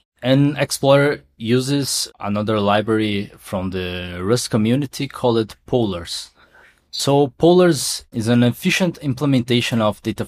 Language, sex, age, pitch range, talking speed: English, male, 20-39, 100-130 Hz, 110 wpm